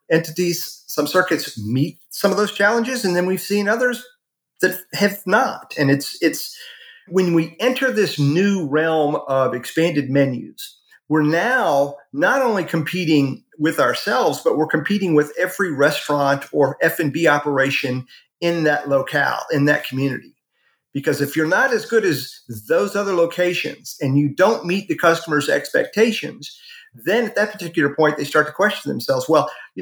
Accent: American